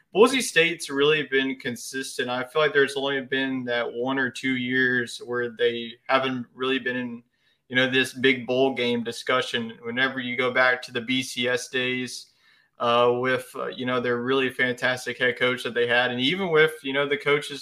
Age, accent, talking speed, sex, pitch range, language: 20-39, American, 195 wpm, male, 125-140 Hz, English